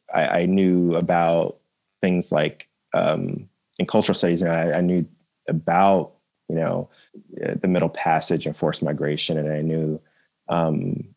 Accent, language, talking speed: American, English, 150 wpm